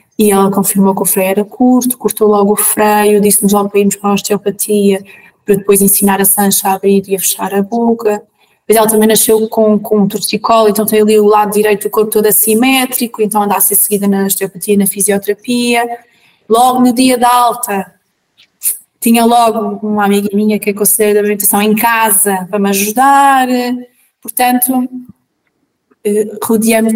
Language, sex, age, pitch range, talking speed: Portuguese, female, 20-39, 195-230 Hz, 180 wpm